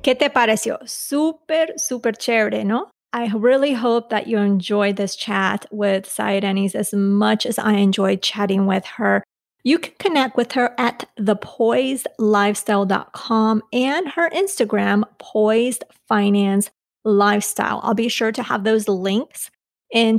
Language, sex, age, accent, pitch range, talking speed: English, female, 30-49, American, 205-260 Hz, 135 wpm